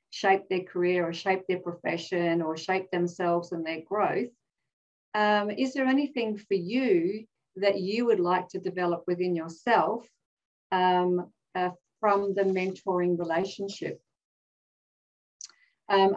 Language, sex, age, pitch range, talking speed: English, female, 50-69, 175-205 Hz, 125 wpm